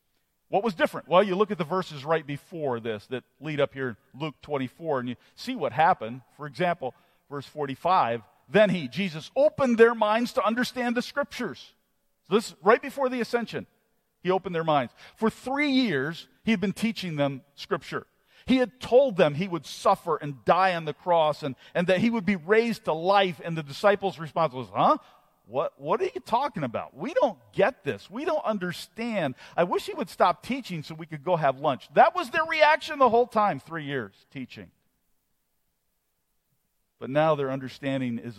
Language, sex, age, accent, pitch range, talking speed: English, male, 50-69, American, 135-220 Hz, 195 wpm